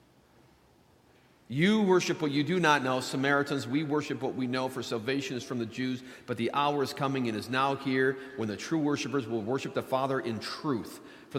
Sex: male